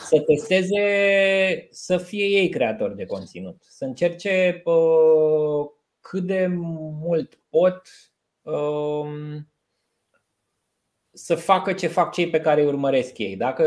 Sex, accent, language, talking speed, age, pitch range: male, native, Romanian, 110 wpm, 20-39, 145-190 Hz